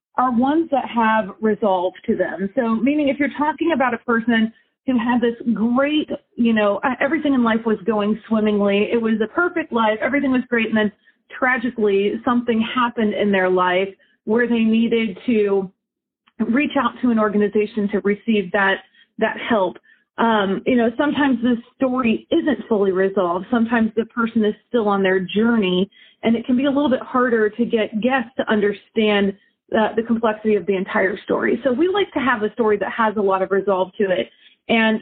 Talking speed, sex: 190 wpm, female